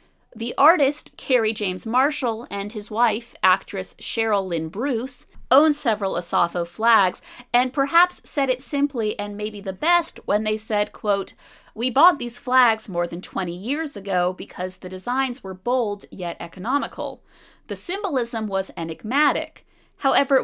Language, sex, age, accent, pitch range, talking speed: English, female, 30-49, American, 185-270 Hz, 145 wpm